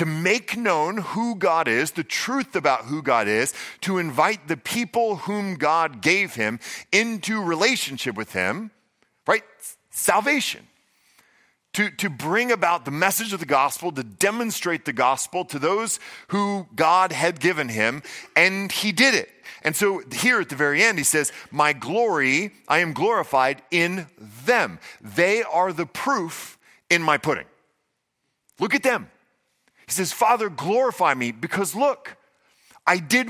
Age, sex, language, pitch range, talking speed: 40-59, male, English, 155-210 Hz, 155 wpm